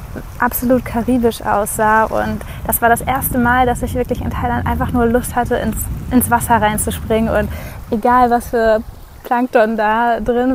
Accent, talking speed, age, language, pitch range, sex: German, 165 wpm, 20-39, German, 210-240 Hz, female